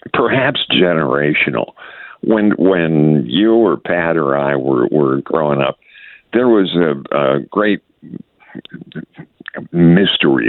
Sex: male